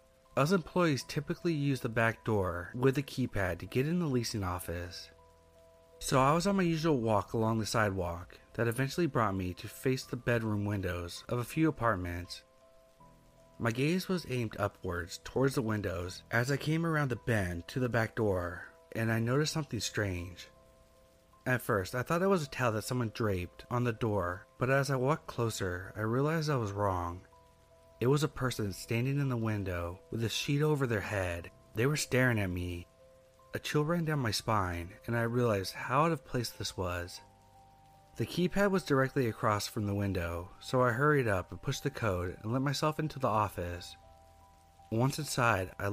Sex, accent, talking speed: male, American, 190 wpm